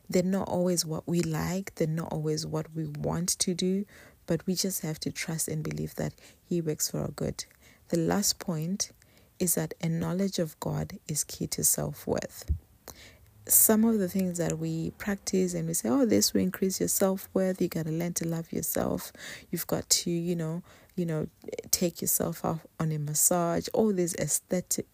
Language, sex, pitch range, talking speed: English, female, 160-190 Hz, 195 wpm